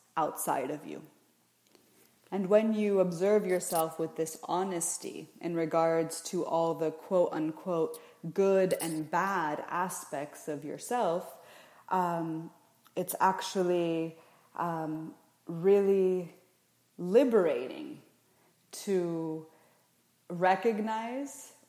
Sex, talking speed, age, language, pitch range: female, 85 wpm, 20-39, English, 160-190 Hz